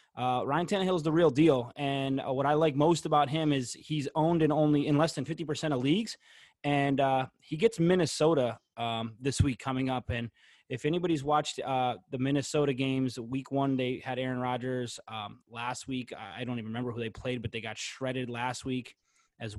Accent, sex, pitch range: American, male, 130-150 Hz